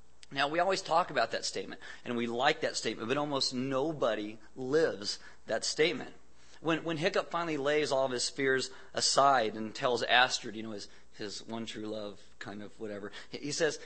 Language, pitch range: English, 115-140 Hz